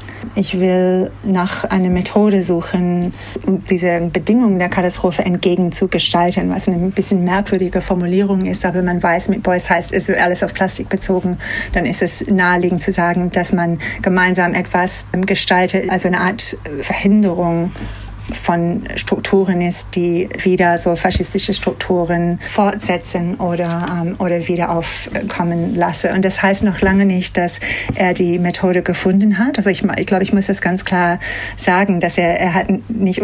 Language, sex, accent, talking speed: German, female, German, 155 wpm